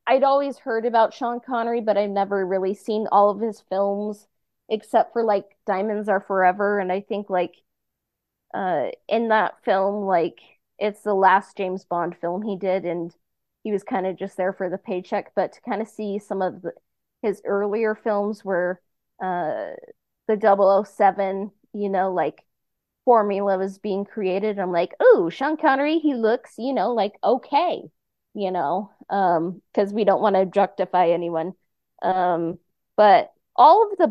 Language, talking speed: English, 175 wpm